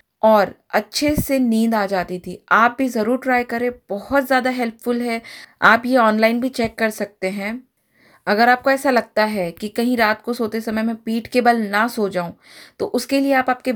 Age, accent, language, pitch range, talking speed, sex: 20-39, native, Hindi, 210-245 Hz, 200 wpm, female